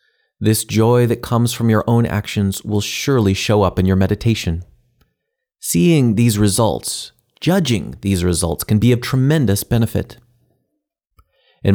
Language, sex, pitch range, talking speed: English, male, 95-120 Hz, 140 wpm